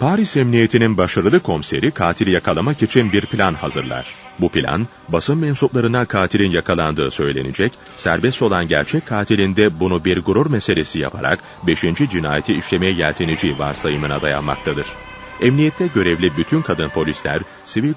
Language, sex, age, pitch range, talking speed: Turkish, male, 30-49, 80-120 Hz, 125 wpm